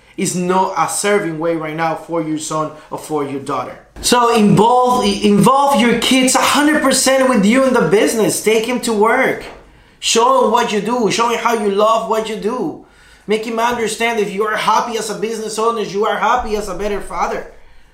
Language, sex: English, male